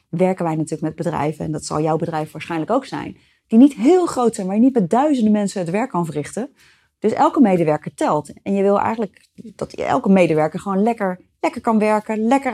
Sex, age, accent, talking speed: female, 30-49, Dutch, 215 wpm